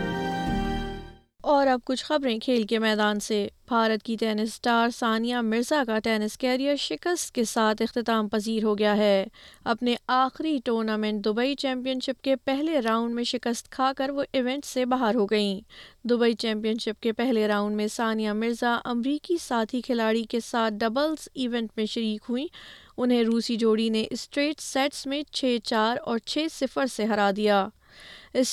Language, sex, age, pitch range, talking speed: Urdu, female, 20-39, 225-265 Hz, 165 wpm